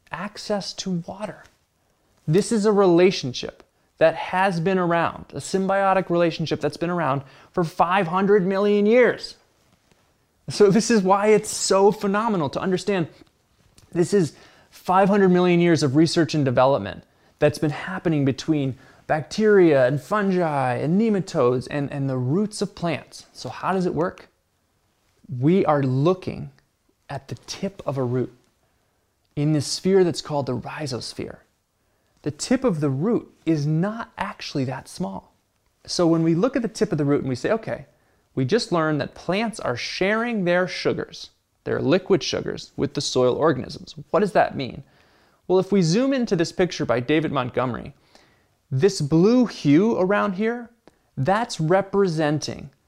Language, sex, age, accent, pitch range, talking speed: English, male, 20-39, American, 135-195 Hz, 155 wpm